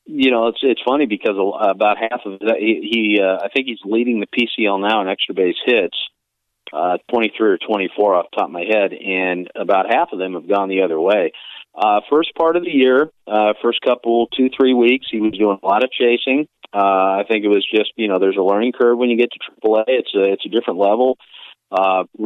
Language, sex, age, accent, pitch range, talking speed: English, male, 40-59, American, 100-120 Hz, 235 wpm